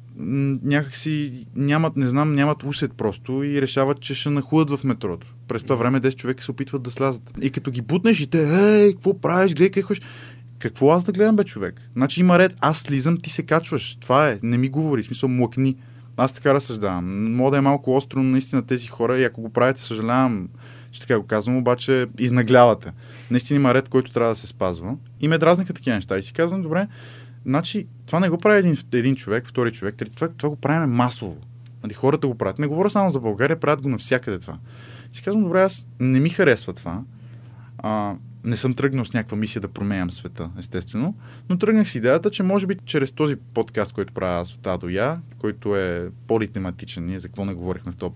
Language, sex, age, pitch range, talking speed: Bulgarian, male, 20-39, 120-150 Hz, 205 wpm